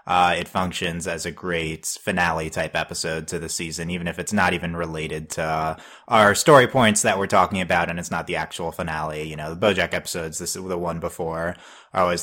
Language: English